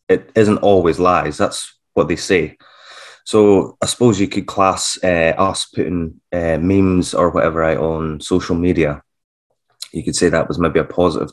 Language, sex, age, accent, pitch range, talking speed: English, male, 20-39, British, 80-100 Hz, 175 wpm